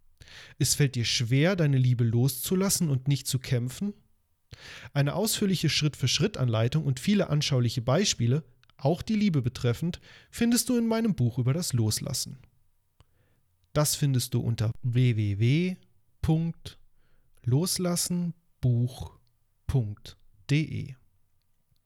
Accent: German